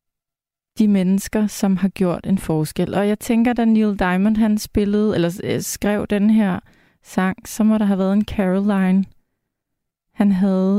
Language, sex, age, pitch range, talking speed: Danish, female, 20-39, 190-225 Hz, 165 wpm